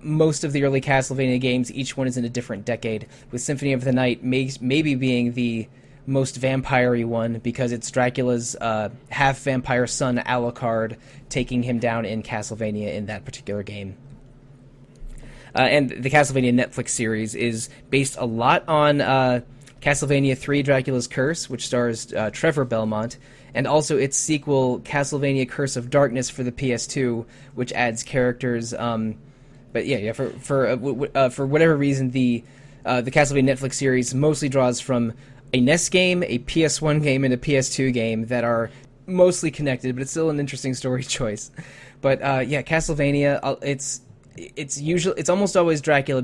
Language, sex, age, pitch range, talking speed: English, male, 20-39, 125-140 Hz, 165 wpm